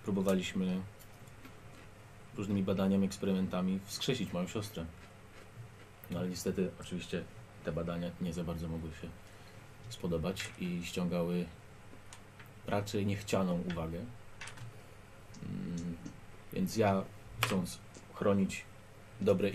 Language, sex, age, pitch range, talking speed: Polish, male, 30-49, 95-110 Hz, 90 wpm